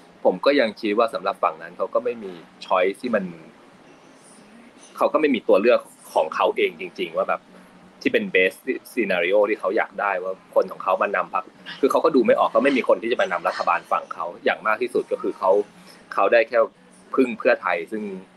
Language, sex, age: Thai, male, 20-39